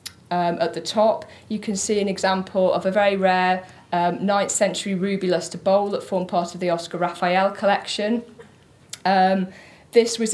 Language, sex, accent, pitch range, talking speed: English, female, British, 180-205 Hz, 170 wpm